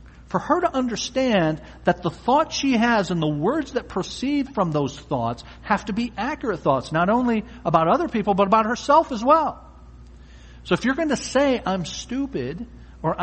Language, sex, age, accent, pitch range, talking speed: English, male, 50-69, American, 130-200 Hz, 180 wpm